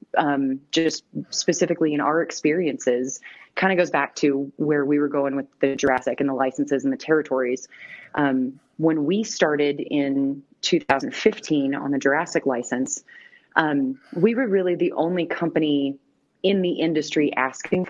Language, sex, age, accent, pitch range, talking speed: English, female, 30-49, American, 145-180 Hz, 150 wpm